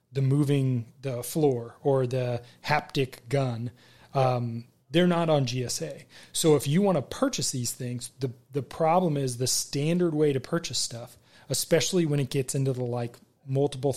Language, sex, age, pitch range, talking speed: English, male, 30-49, 125-150 Hz, 170 wpm